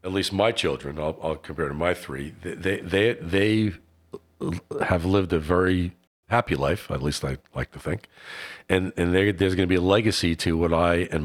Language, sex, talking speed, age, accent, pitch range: English, male, 205 wpm, 50-69, American, 80-90 Hz